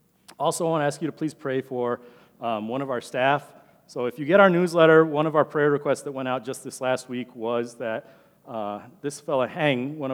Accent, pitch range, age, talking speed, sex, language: American, 120-150 Hz, 40-59, 235 wpm, male, English